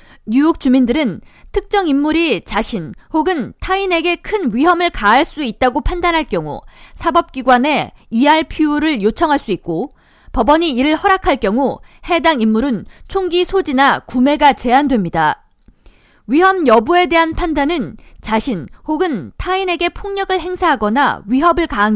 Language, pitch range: Korean, 250-340 Hz